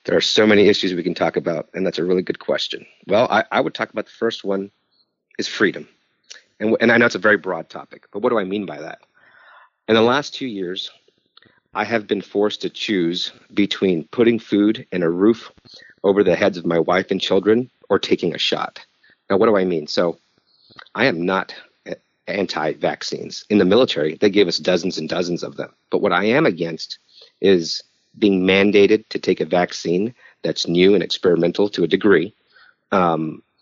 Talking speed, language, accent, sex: 200 wpm, English, American, male